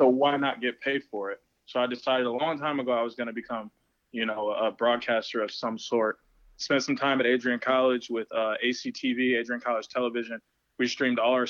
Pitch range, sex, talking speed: 110-125 Hz, male, 220 wpm